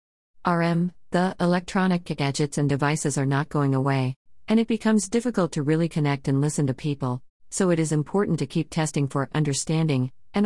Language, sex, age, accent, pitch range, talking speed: English, female, 40-59, American, 130-170 Hz, 180 wpm